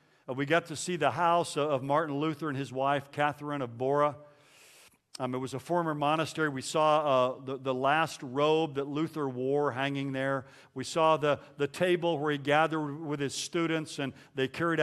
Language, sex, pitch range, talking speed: English, male, 135-160 Hz, 195 wpm